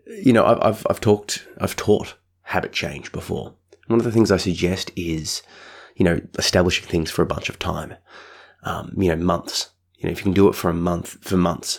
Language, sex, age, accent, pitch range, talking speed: English, male, 20-39, Australian, 85-95 Hz, 220 wpm